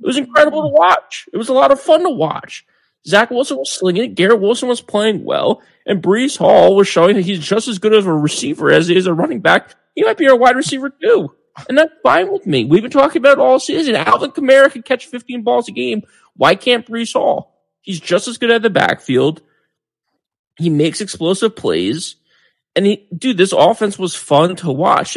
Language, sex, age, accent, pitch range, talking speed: English, male, 30-49, American, 145-215 Hz, 220 wpm